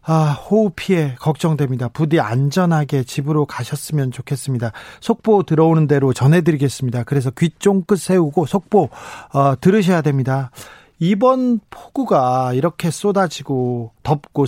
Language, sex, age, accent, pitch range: Korean, male, 40-59, native, 130-180 Hz